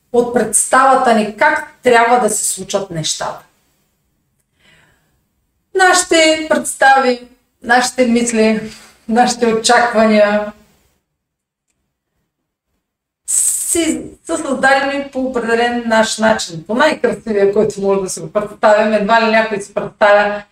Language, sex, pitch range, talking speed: Bulgarian, female, 195-250 Hz, 100 wpm